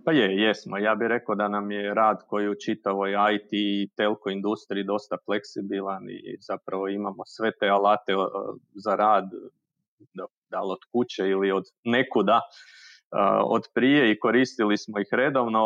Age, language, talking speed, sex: 40-59, Croatian, 155 wpm, male